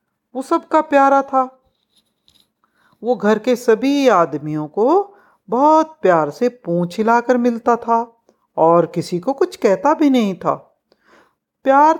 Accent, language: native, Hindi